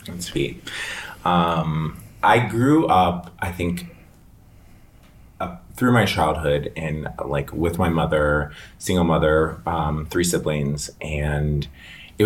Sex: male